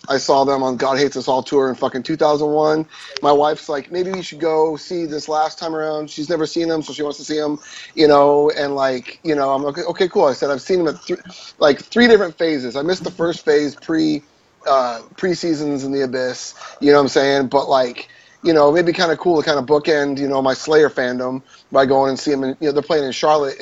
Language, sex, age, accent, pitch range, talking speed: English, male, 30-49, American, 135-170 Hz, 255 wpm